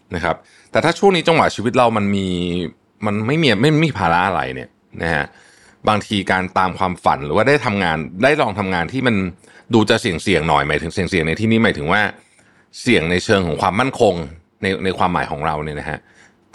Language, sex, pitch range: Thai, male, 90-115 Hz